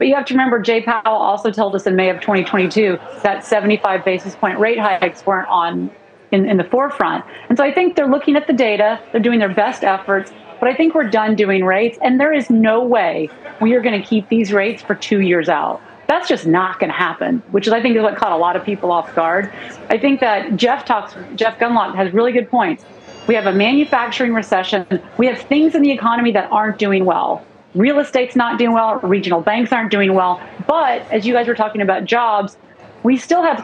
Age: 30-49